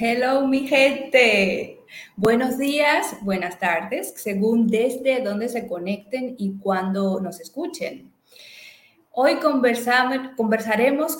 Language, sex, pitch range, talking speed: Spanish, female, 210-275 Hz, 100 wpm